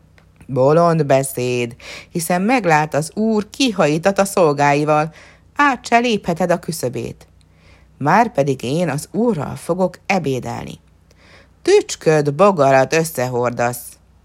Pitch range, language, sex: 120-195 Hz, Hungarian, female